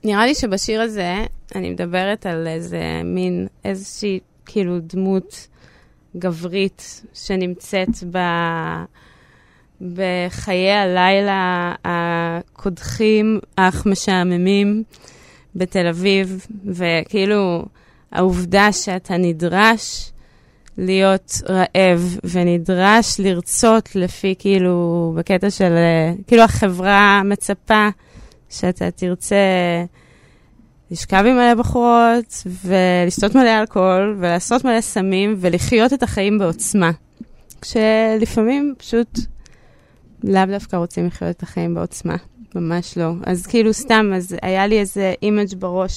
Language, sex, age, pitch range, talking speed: Hebrew, female, 20-39, 175-205 Hz, 95 wpm